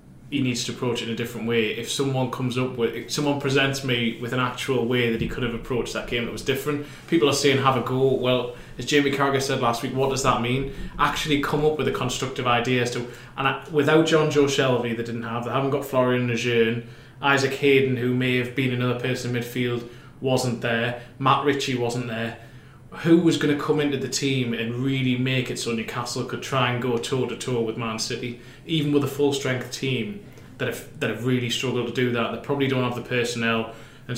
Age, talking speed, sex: 20-39, 230 wpm, male